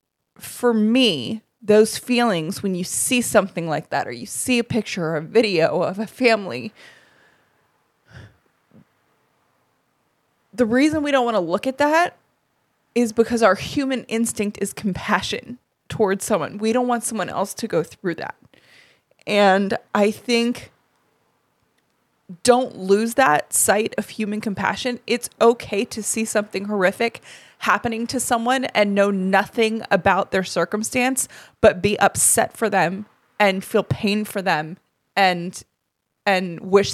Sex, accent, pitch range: female, American, 185-230 Hz